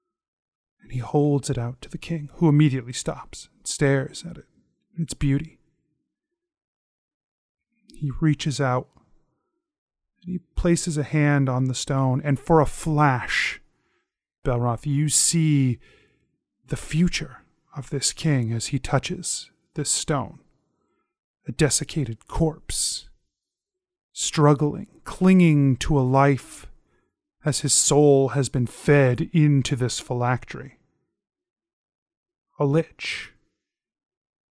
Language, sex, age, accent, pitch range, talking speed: English, male, 30-49, American, 135-170 Hz, 110 wpm